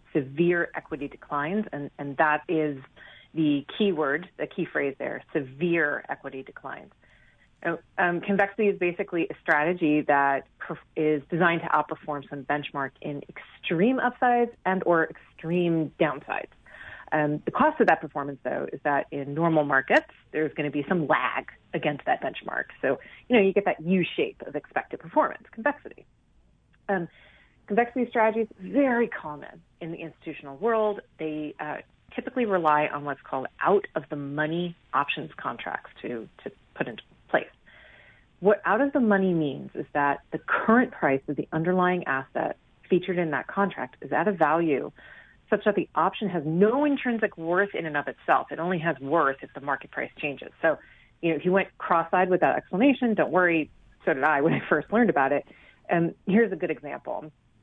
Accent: American